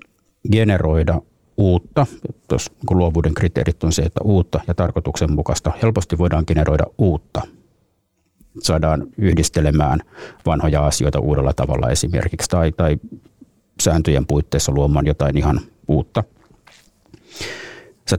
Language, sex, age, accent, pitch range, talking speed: Finnish, male, 50-69, native, 75-90 Hz, 100 wpm